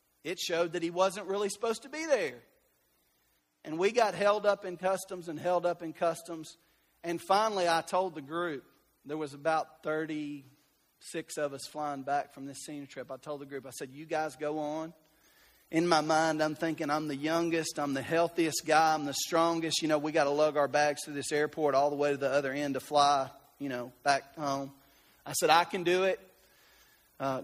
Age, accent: 40-59, American